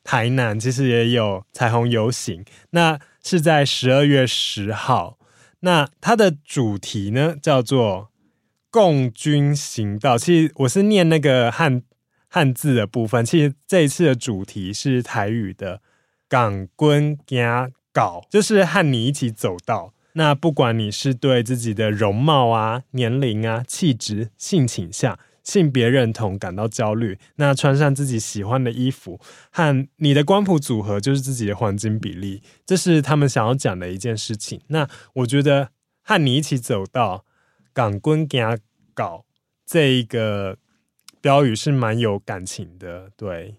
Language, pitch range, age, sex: Chinese, 110-145 Hz, 20-39, male